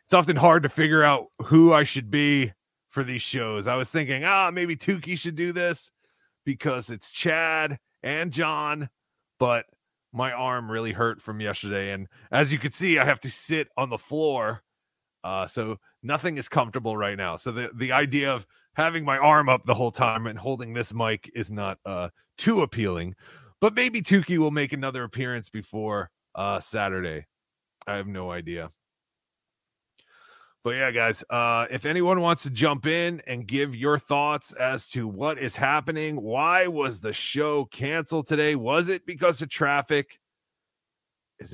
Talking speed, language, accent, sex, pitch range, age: 170 wpm, English, American, male, 115-160 Hz, 30-49